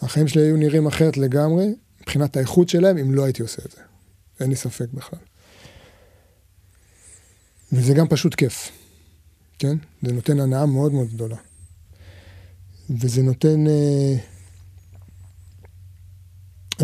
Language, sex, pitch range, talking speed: Hebrew, male, 95-145 Hz, 120 wpm